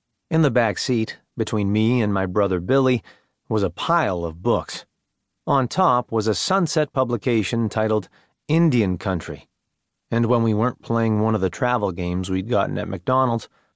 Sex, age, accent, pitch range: male, 30-49, American, 100-130 Hz